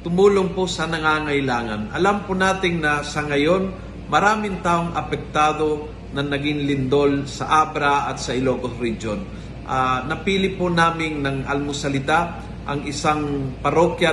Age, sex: 50-69, male